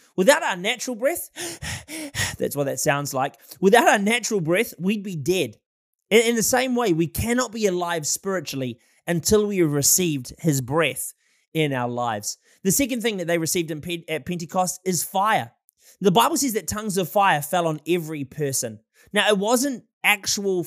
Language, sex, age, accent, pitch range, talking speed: English, male, 20-39, Australian, 150-210 Hz, 170 wpm